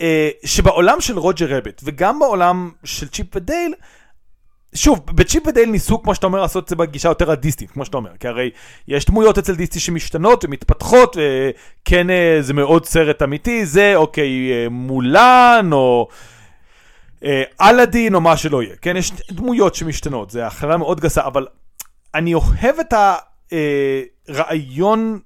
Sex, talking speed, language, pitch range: male, 155 wpm, Hebrew, 150-225 Hz